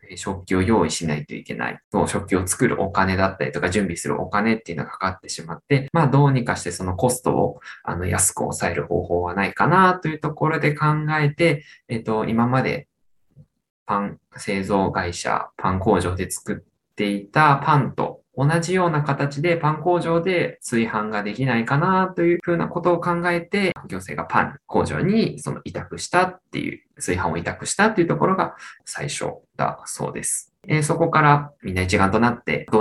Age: 20-39